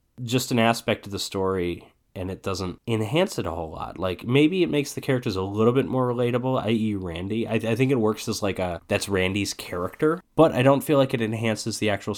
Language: English